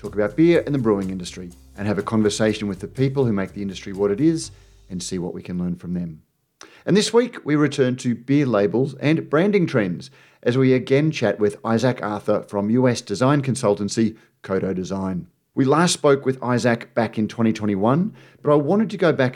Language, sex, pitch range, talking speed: English, male, 100-125 Hz, 210 wpm